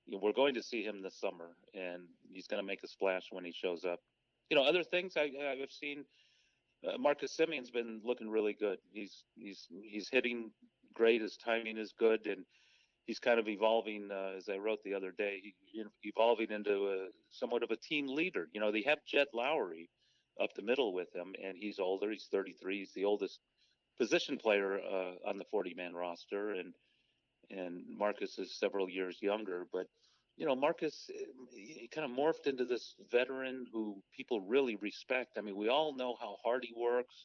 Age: 40-59